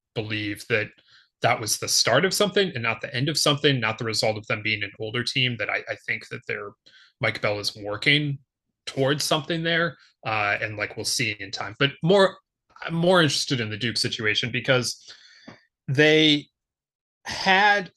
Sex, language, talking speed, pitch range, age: male, English, 185 wpm, 115-150 Hz, 30-49